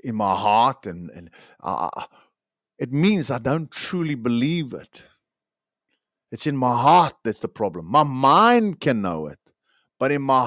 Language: English